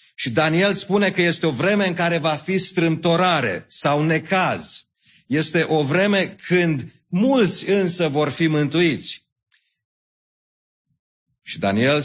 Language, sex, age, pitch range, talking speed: English, male, 40-59, 120-160 Hz, 125 wpm